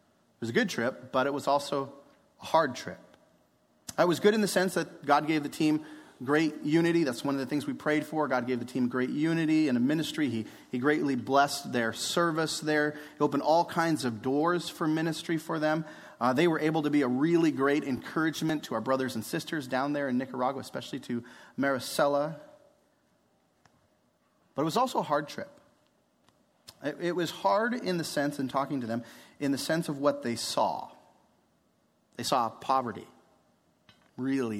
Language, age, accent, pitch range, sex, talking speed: English, 30-49, American, 125-160 Hz, male, 190 wpm